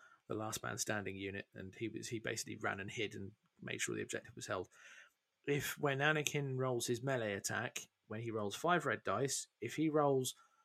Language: English